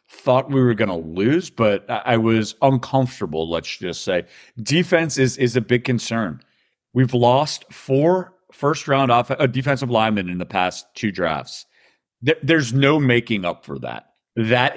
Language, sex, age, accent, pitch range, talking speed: English, male, 40-59, American, 105-135 Hz, 160 wpm